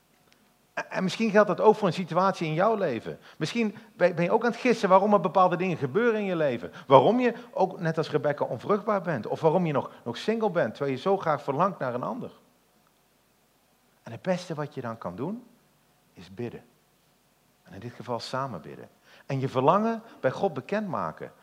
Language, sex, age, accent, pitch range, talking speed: Dutch, male, 50-69, Dutch, 135-210 Hz, 200 wpm